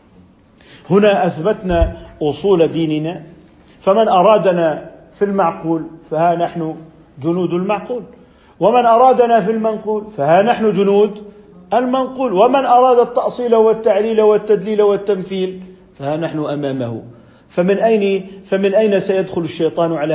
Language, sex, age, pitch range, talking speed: Arabic, male, 50-69, 170-225 Hz, 105 wpm